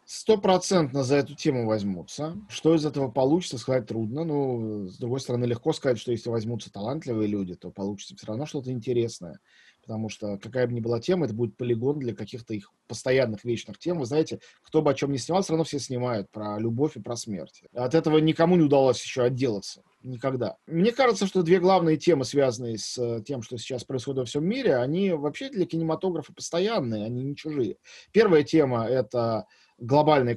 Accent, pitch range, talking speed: native, 120-160 Hz, 190 wpm